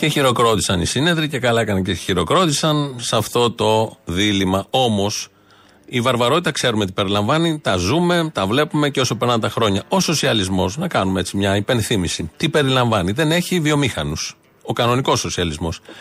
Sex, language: male, Greek